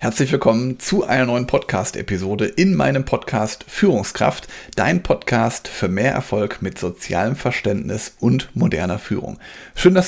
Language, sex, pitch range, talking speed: German, male, 115-140 Hz, 135 wpm